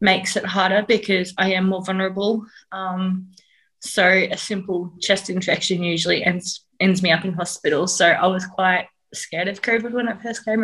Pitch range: 175-195 Hz